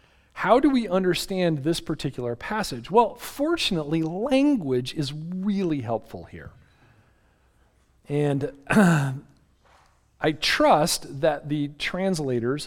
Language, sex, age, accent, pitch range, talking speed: English, male, 40-59, American, 125-185 Hz, 95 wpm